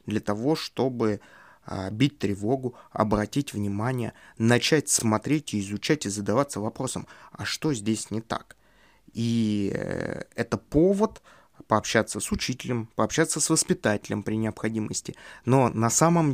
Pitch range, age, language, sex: 105-135 Hz, 20-39, Russian, male